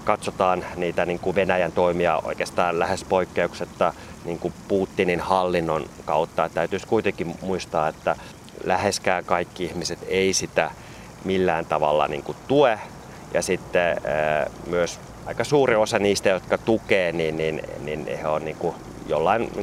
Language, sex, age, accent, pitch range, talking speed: Finnish, male, 30-49, native, 85-100 Hz, 115 wpm